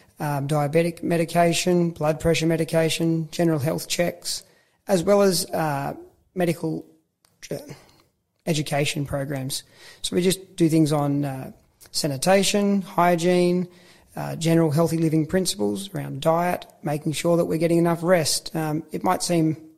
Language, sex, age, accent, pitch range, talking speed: English, male, 30-49, Australian, 155-175 Hz, 135 wpm